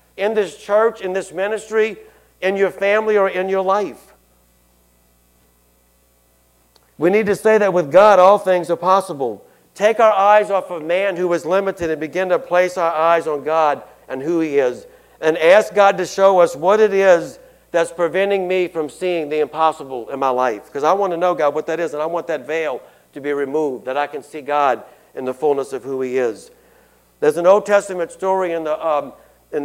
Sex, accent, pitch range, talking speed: male, American, 150-190 Hz, 205 wpm